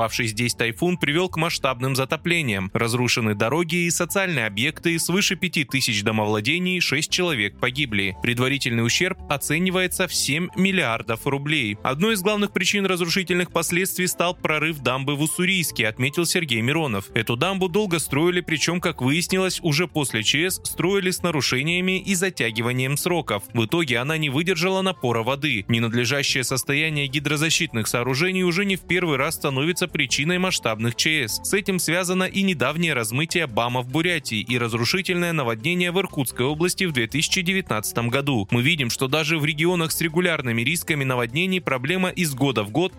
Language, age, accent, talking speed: Russian, 20-39, native, 150 wpm